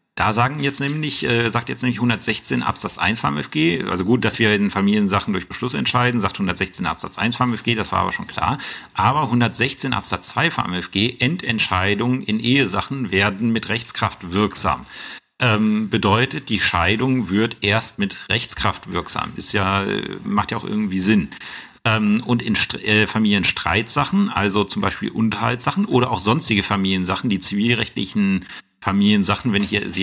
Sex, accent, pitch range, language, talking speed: male, German, 95-120 Hz, German, 165 wpm